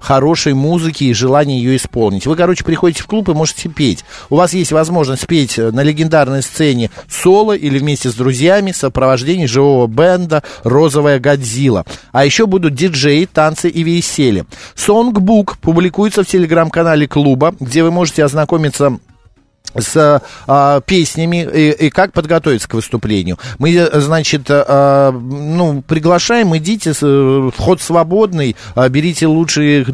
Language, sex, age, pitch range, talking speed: Russian, male, 50-69, 130-165 Hz, 135 wpm